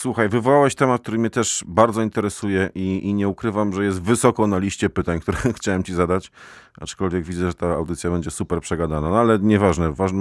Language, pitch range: Polish, 90-105 Hz